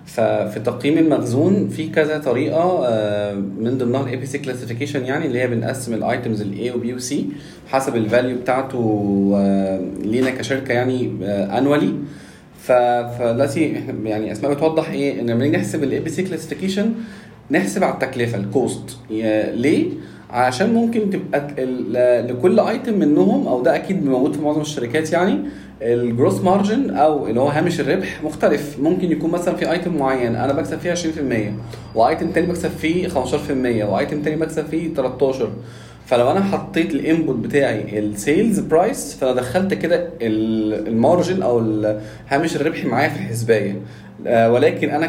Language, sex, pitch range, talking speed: Arabic, male, 115-160 Hz, 140 wpm